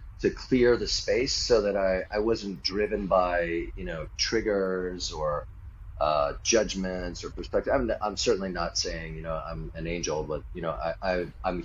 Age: 30-49